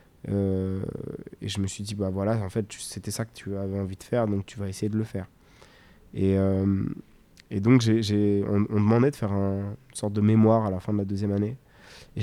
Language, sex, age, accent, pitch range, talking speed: French, male, 20-39, French, 100-115 Hz, 245 wpm